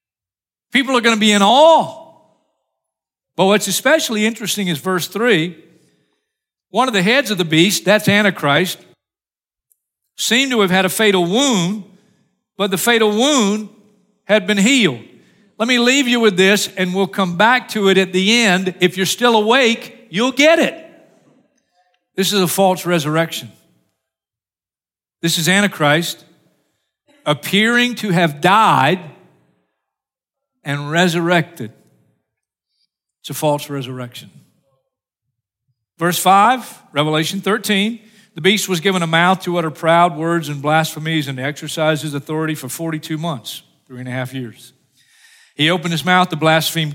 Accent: American